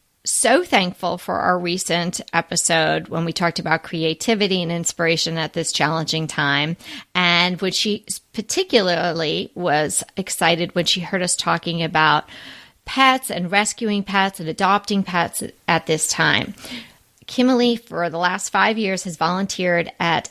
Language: English